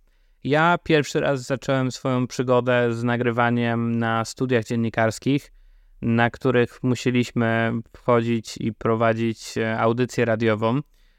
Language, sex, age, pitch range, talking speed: Polish, male, 20-39, 115-125 Hz, 100 wpm